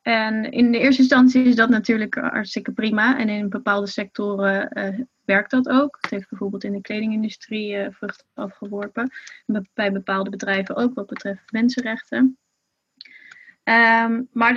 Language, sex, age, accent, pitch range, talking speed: Dutch, female, 20-39, Dutch, 205-250 Hz, 145 wpm